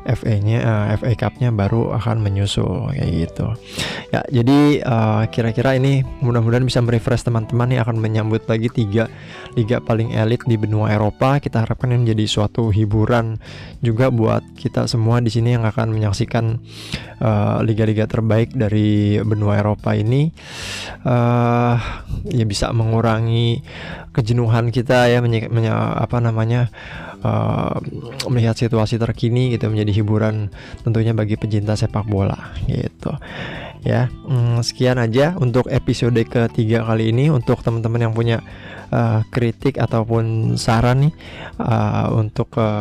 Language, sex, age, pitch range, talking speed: Indonesian, male, 20-39, 110-120 Hz, 135 wpm